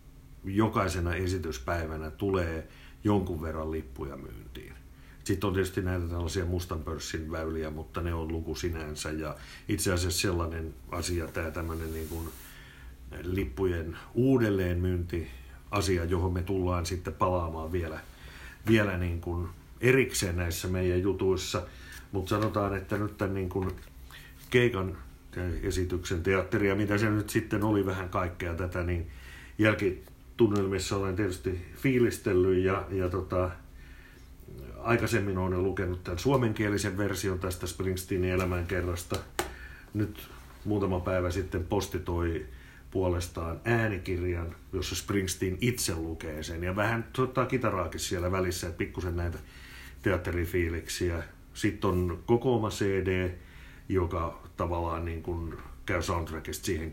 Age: 60-79